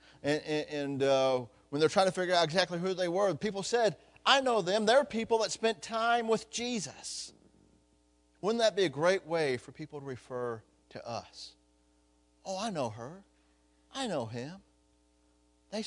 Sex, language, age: male, English, 40-59